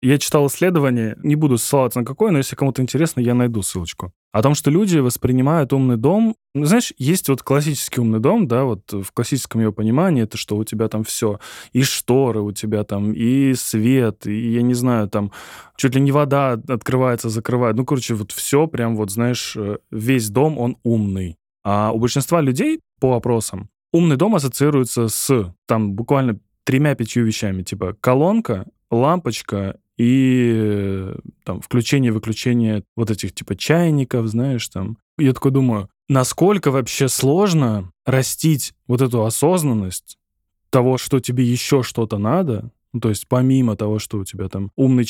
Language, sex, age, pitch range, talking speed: Russian, male, 10-29, 105-135 Hz, 160 wpm